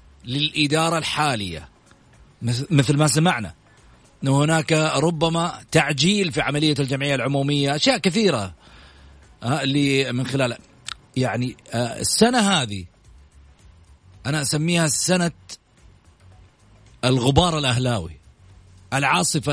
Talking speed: 85 wpm